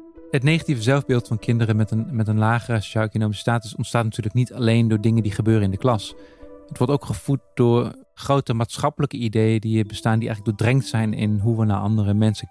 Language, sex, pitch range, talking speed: Dutch, male, 110-130 Hz, 205 wpm